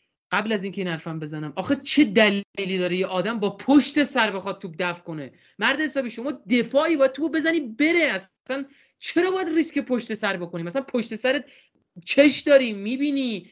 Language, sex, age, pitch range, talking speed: Persian, male, 30-49, 180-270 Hz, 180 wpm